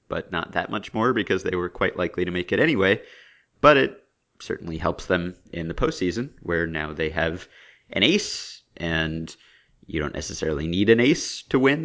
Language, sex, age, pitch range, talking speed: English, male, 30-49, 80-95 Hz, 185 wpm